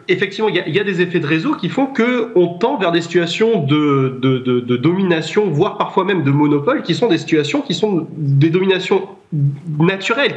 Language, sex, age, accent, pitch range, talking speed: French, male, 30-49, French, 160-220 Hz, 220 wpm